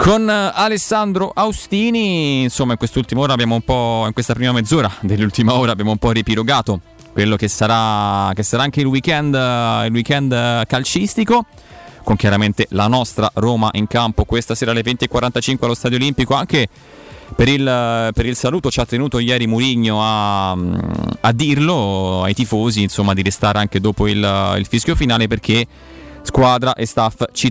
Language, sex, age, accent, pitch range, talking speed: Italian, male, 20-39, native, 105-125 Hz, 160 wpm